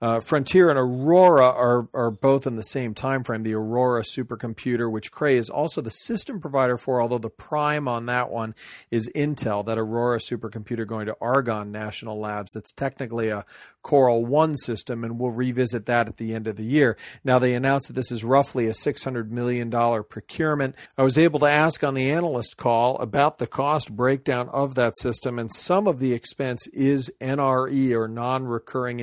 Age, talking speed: 40-59, 190 wpm